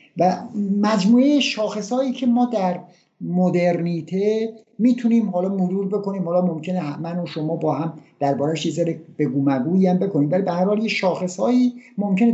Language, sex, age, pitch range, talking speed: Persian, male, 50-69, 145-190 Hz, 125 wpm